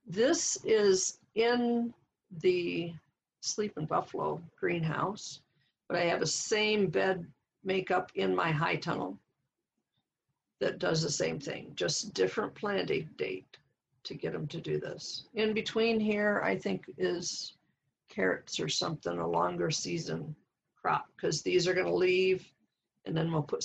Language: English